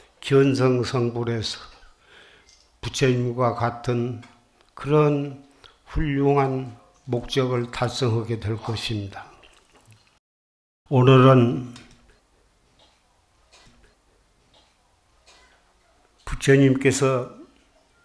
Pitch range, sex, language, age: 120-150 Hz, male, Korean, 60-79